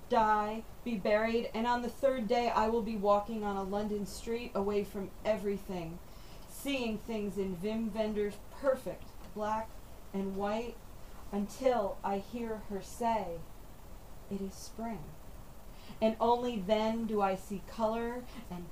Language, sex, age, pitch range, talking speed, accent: English, female, 40-59, 195-230 Hz, 140 wpm, American